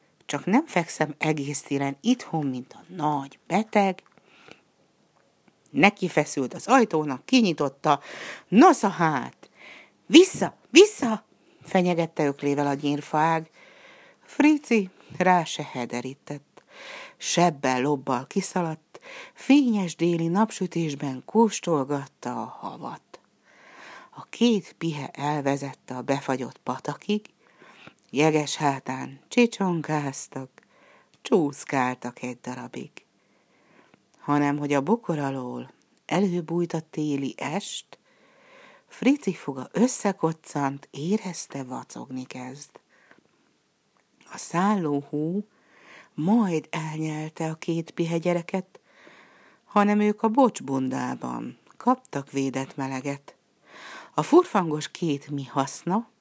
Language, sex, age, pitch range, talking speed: Hungarian, female, 60-79, 140-200 Hz, 85 wpm